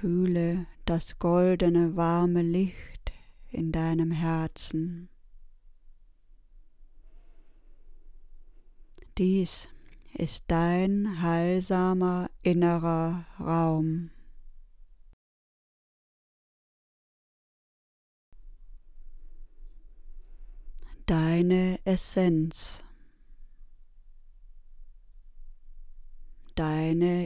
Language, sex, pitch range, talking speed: German, female, 160-180 Hz, 35 wpm